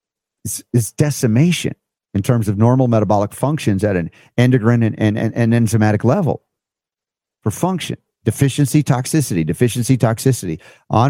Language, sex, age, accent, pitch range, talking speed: English, male, 50-69, American, 100-130 Hz, 125 wpm